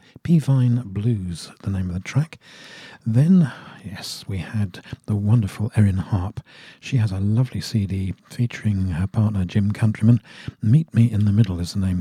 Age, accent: 50-69, British